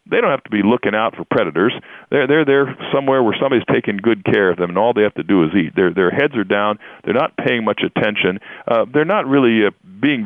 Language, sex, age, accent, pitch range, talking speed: English, male, 50-69, American, 100-130 Hz, 255 wpm